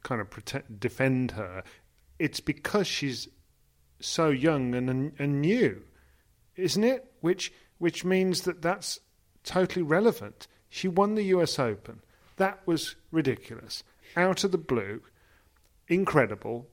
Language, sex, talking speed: English, male, 125 wpm